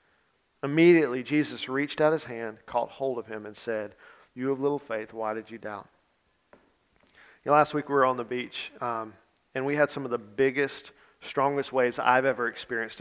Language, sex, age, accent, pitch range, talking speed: English, male, 40-59, American, 125-150 Hz, 195 wpm